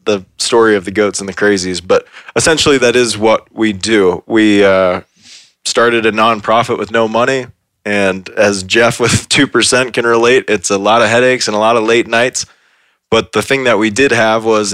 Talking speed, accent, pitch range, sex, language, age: 200 wpm, American, 100-115 Hz, male, English, 20-39